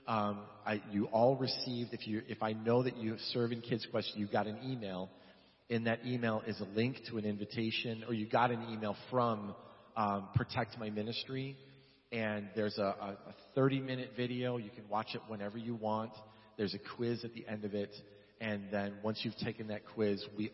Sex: male